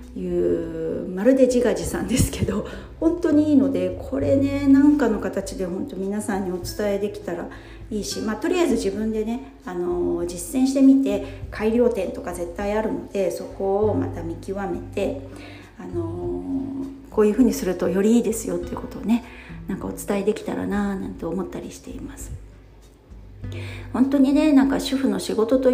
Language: Japanese